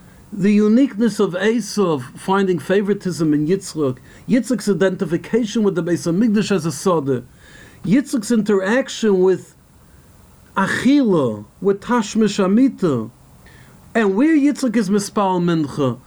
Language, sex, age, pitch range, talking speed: English, male, 50-69, 145-205 Hz, 110 wpm